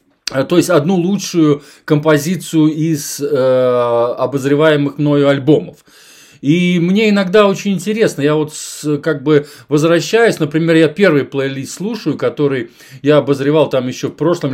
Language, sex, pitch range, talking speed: Russian, male, 140-175 Hz, 135 wpm